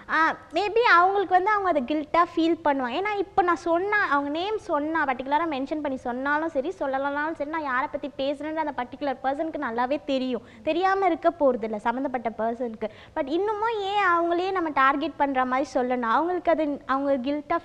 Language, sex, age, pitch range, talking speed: Tamil, female, 20-39, 260-335 Hz, 170 wpm